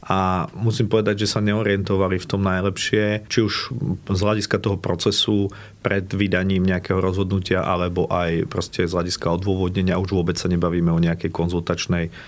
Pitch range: 90-105 Hz